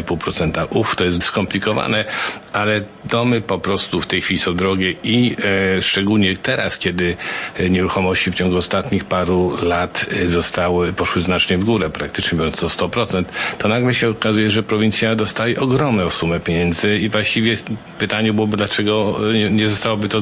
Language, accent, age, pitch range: Polish, native, 50-69, 90-110 Hz